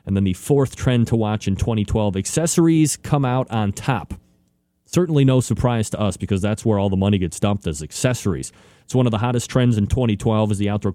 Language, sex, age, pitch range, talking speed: English, male, 30-49, 100-130 Hz, 220 wpm